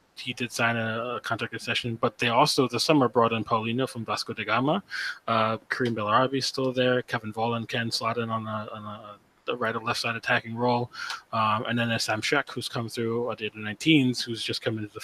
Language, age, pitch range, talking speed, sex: English, 20-39, 105-120 Hz, 230 wpm, male